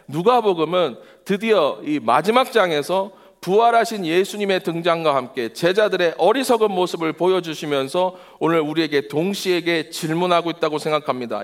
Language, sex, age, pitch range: Korean, male, 40-59, 155-205 Hz